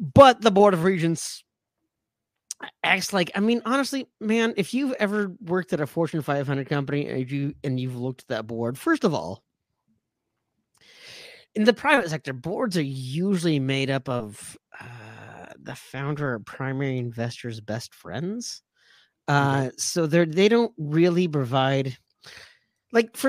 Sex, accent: male, American